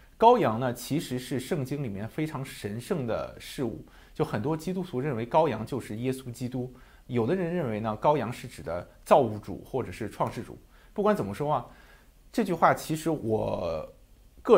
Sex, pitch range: male, 110-165 Hz